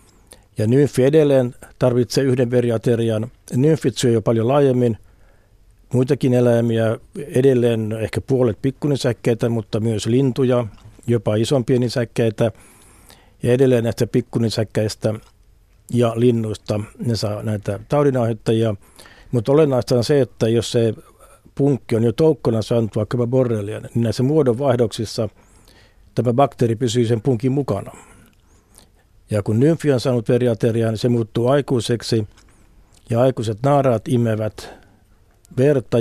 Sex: male